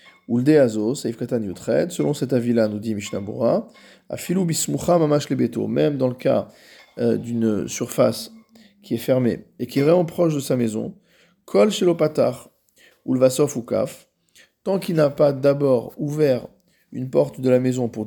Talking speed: 170 wpm